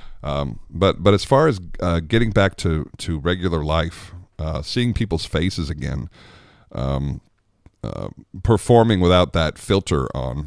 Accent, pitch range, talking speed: American, 80-110 Hz, 145 wpm